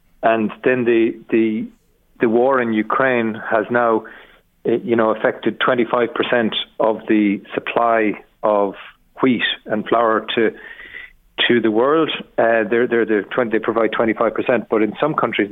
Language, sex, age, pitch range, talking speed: English, male, 40-59, 110-120 Hz, 145 wpm